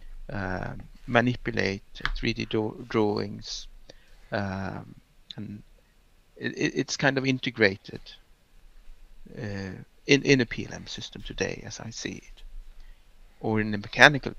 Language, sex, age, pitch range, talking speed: English, male, 60-79, 105-130 Hz, 115 wpm